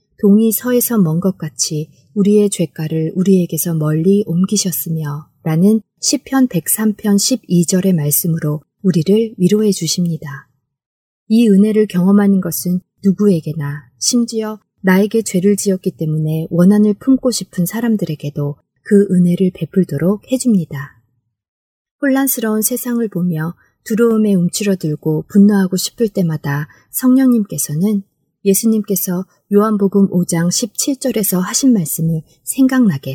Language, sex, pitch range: Korean, female, 160-215 Hz